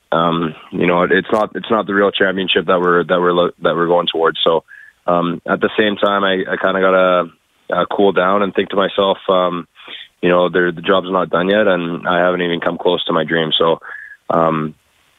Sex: male